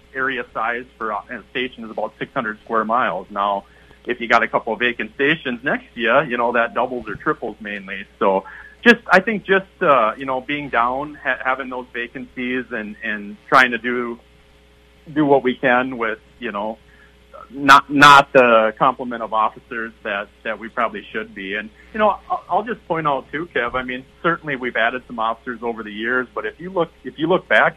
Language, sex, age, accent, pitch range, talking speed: English, male, 40-59, American, 110-130 Hz, 205 wpm